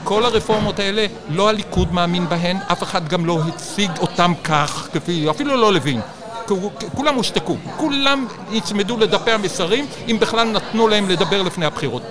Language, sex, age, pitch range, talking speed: Hebrew, male, 60-79, 165-205 Hz, 155 wpm